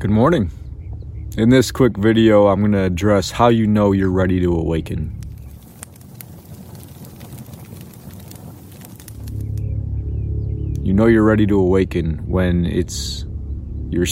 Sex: male